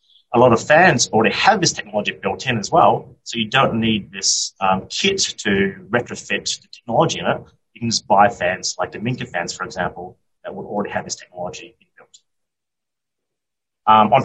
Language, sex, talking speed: English, male, 180 wpm